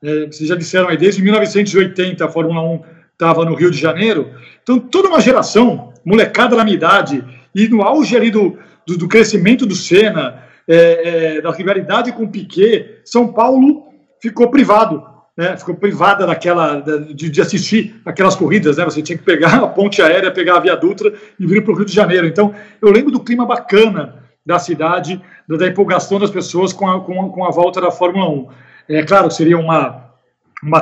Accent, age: Brazilian, 40-59